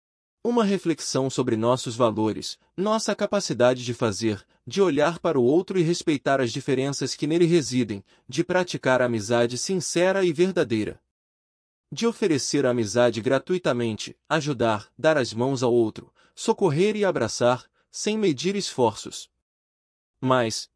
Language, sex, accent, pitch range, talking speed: Portuguese, male, Brazilian, 120-165 Hz, 135 wpm